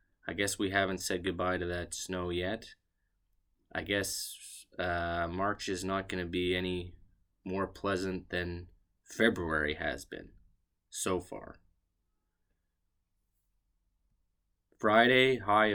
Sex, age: male, 20-39